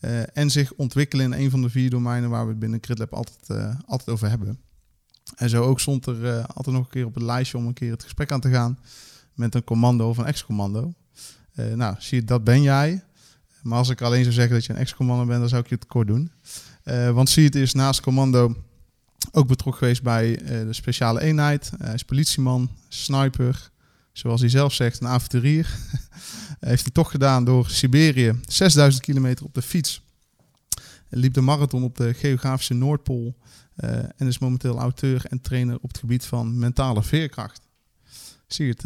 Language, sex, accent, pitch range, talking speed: Dutch, male, Dutch, 120-135 Hz, 200 wpm